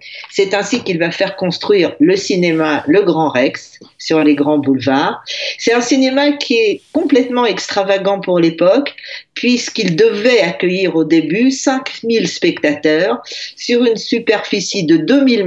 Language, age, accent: French, 50-69, French